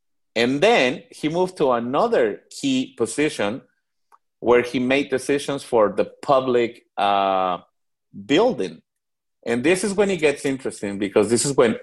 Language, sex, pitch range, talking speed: English, male, 115-145 Hz, 140 wpm